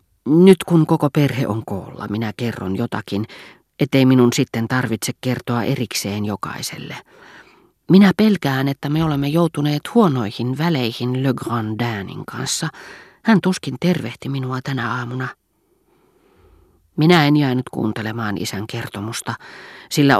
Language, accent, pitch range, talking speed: Finnish, native, 110-145 Hz, 120 wpm